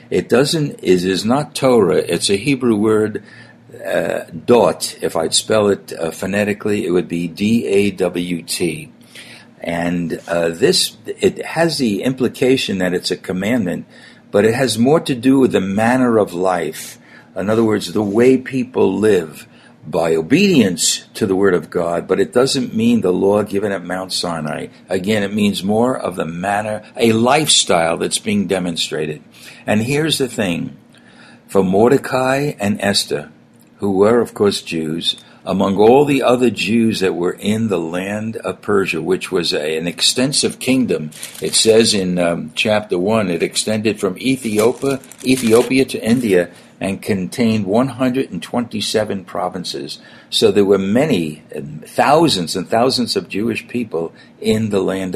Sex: male